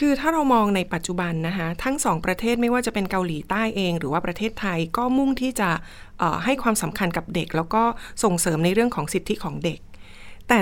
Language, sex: Thai, female